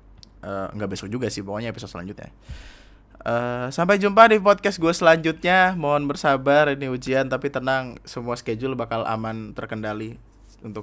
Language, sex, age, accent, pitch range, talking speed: Indonesian, male, 20-39, native, 110-185 Hz, 150 wpm